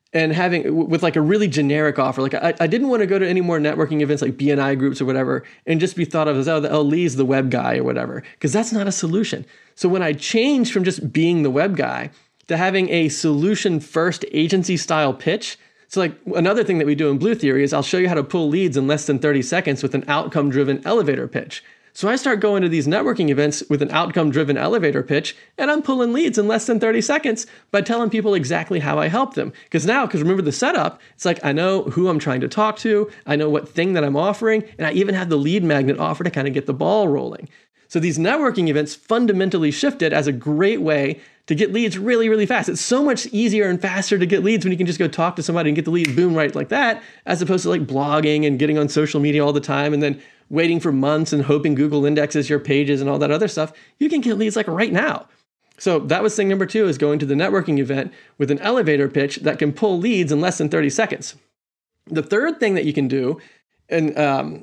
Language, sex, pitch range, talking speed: English, male, 150-205 Hz, 250 wpm